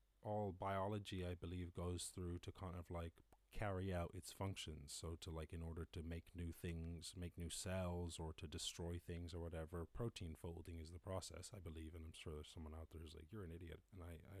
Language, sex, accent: English, male, American